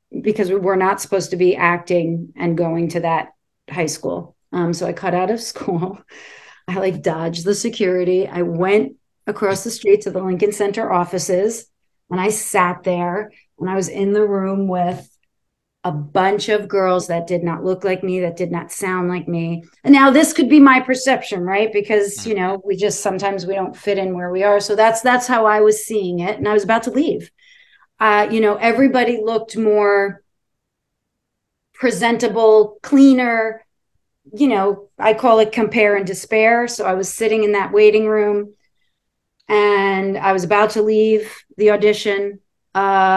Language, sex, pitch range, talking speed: English, female, 185-220 Hz, 180 wpm